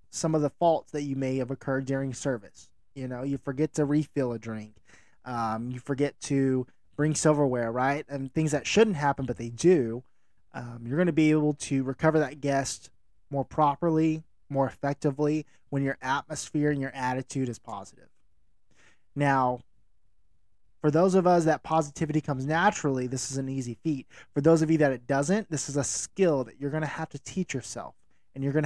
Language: English